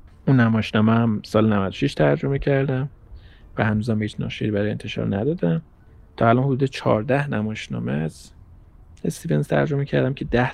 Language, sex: Persian, male